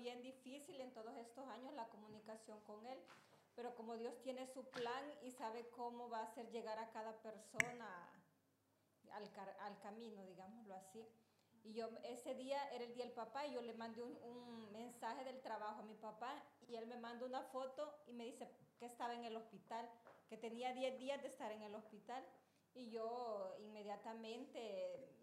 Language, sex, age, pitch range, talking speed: Italian, female, 30-49, 220-255 Hz, 185 wpm